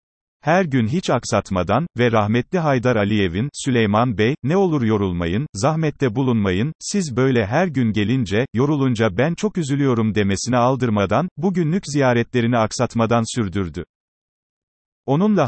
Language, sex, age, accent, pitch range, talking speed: Turkish, male, 40-59, native, 110-145 Hz, 120 wpm